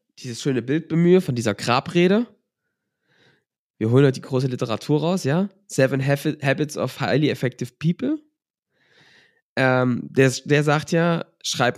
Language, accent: German, German